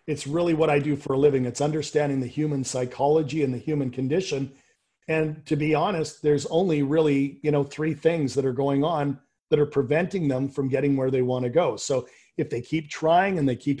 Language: English